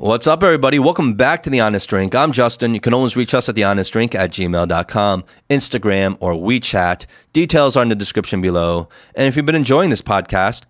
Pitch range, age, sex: 95-120 Hz, 30-49, male